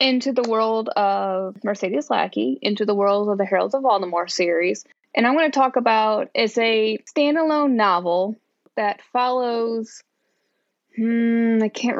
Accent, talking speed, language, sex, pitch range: American, 150 wpm, English, female, 195-255 Hz